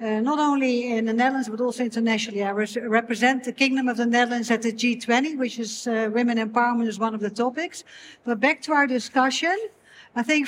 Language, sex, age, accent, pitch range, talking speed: English, female, 60-79, Dutch, 240-285 Hz, 205 wpm